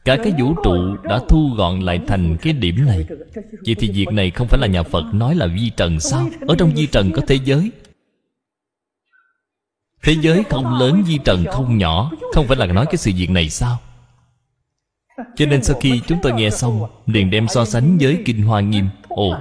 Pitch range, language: 105-165 Hz, Vietnamese